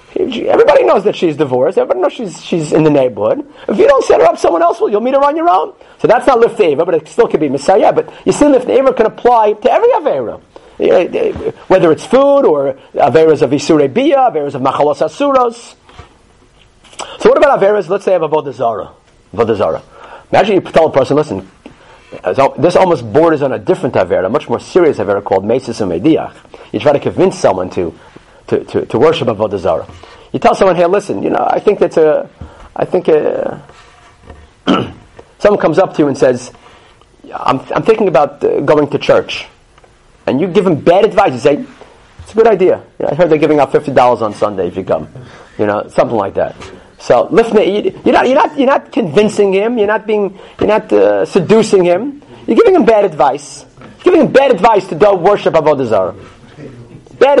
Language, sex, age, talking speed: English, male, 40-59, 205 wpm